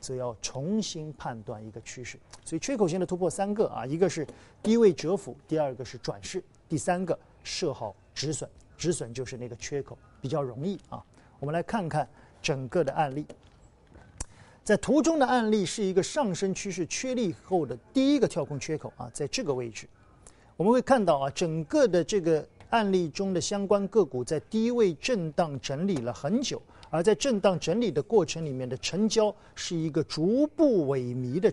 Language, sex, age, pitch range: Chinese, male, 50-69, 130-205 Hz